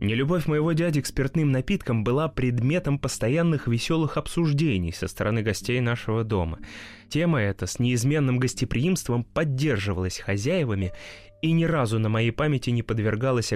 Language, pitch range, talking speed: Russian, 100-130 Hz, 135 wpm